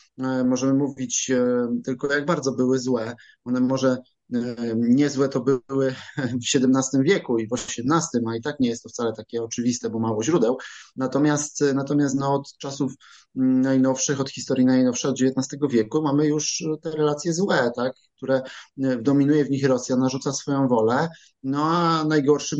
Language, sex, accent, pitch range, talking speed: Polish, male, native, 125-150 Hz, 150 wpm